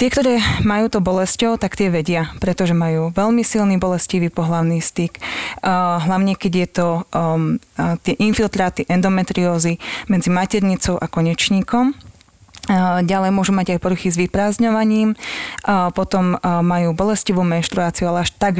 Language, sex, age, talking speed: Slovak, female, 20-39, 130 wpm